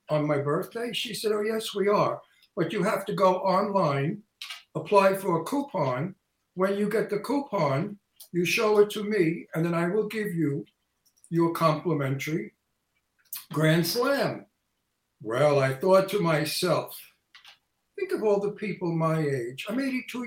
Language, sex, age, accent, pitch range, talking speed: English, male, 60-79, American, 165-215 Hz, 155 wpm